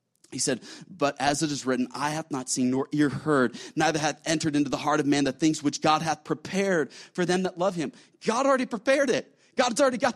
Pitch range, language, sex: 165-255 Hz, English, male